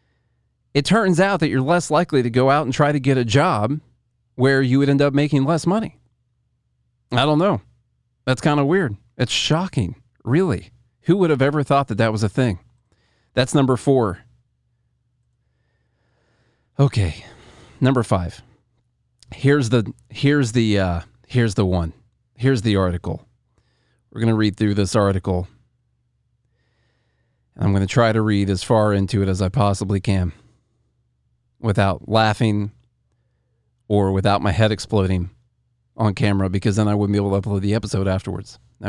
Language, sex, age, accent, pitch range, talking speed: English, male, 40-59, American, 100-130 Hz, 155 wpm